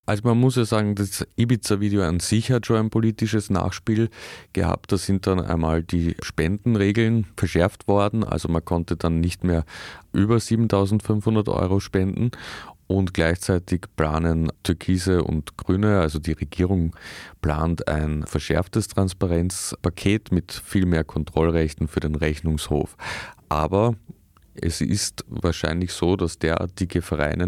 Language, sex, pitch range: German, male, 80-100 Hz